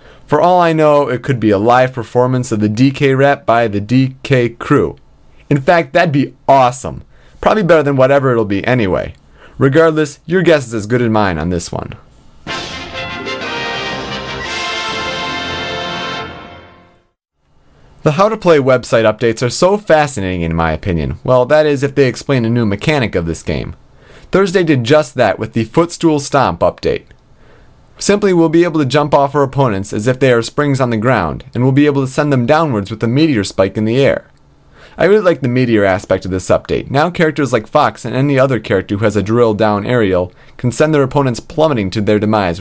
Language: English